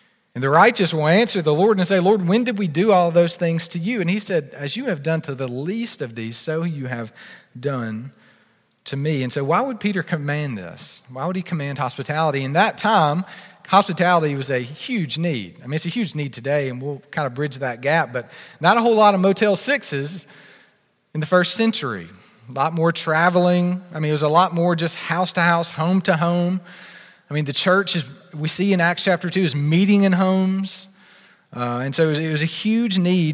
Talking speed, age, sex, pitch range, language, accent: 230 wpm, 40-59, male, 150-190 Hz, English, American